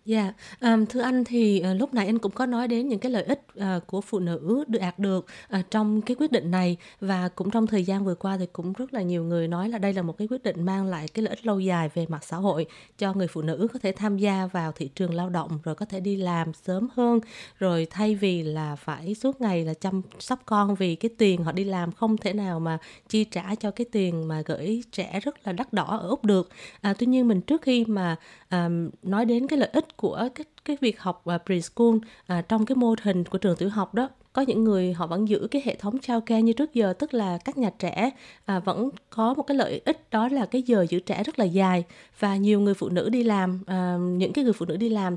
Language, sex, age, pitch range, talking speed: Vietnamese, female, 20-39, 185-230 Hz, 255 wpm